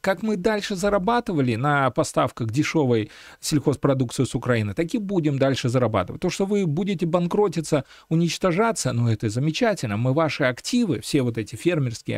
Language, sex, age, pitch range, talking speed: Russian, male, 40-59, 120-170 Hz, 155 wpm